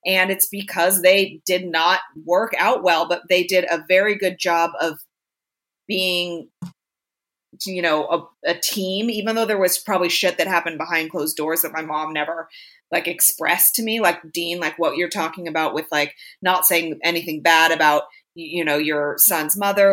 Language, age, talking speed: English, 30-49, 185 wpm